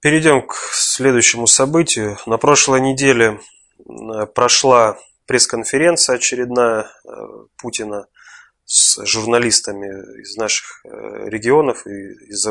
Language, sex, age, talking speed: Russian, male, 20-39, 85 wpm